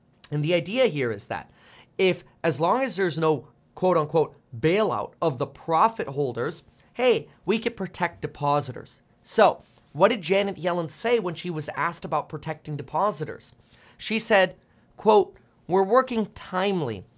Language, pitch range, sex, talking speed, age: English, 150-210 Hz, male, 145 wpm, 30-49